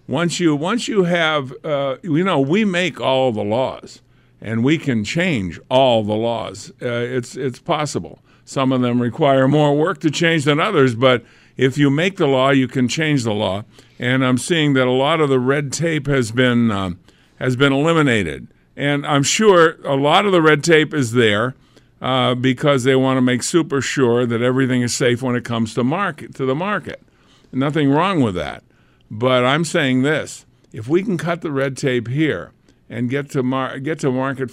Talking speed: 200 wpm